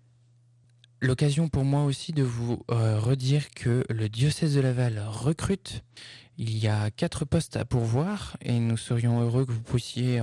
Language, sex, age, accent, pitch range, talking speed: French, male, 20-39, French, 115-140 Hz, 160 wpm